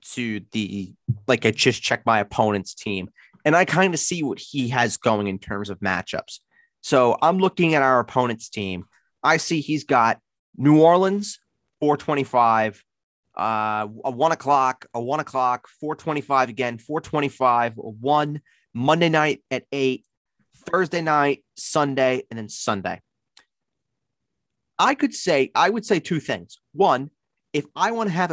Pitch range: 110-155 Hz